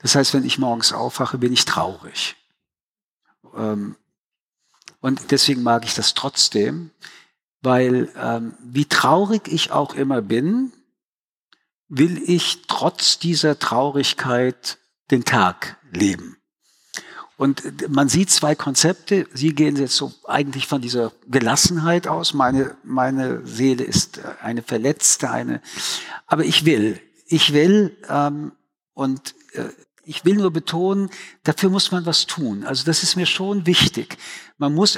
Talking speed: 125 wpm